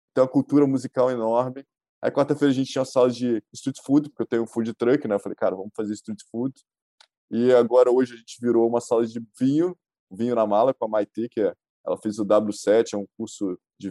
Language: Portuguese